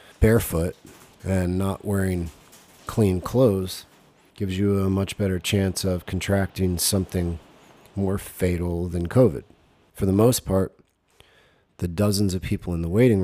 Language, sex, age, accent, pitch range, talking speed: English, male, 40-59, American, 85-100 Hz, 135 wpm